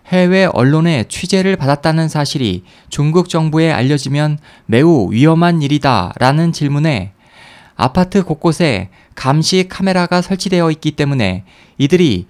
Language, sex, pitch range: Korean, male, 130-175 Hz